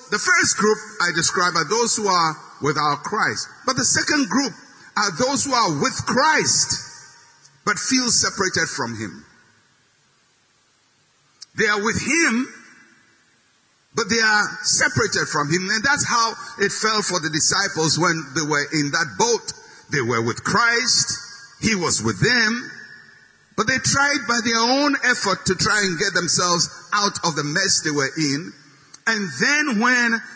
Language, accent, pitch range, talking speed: English, Nigerian, 185-250 Hz, 160 wpm